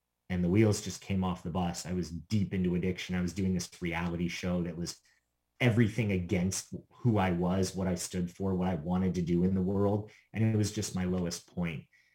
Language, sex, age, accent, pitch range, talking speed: English, male, 30-49, American, 90-120 Hz, 220 wpm